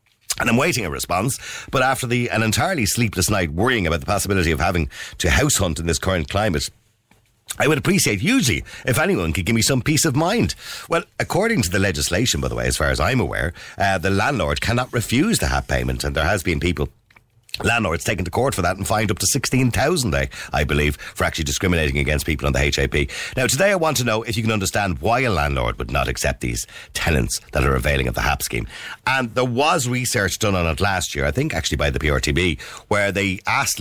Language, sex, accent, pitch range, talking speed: English, male, Irish, 80-120 Hz, 225 wpm